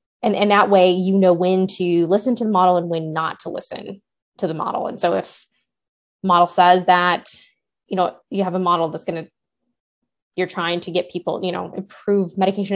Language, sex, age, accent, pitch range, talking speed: English, female, 10-29, American, 175-195 Hz, 200 wpm